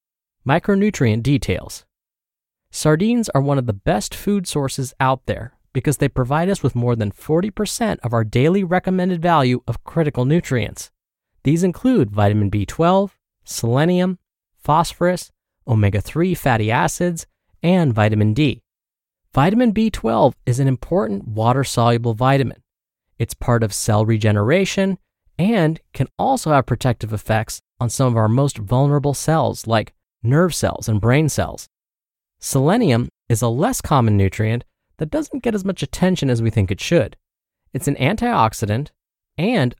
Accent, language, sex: American, English, male